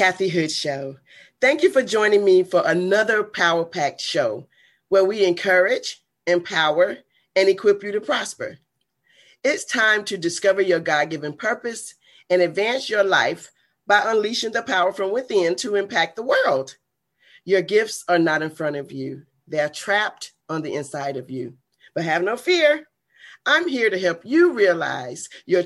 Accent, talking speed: American, 160 wpm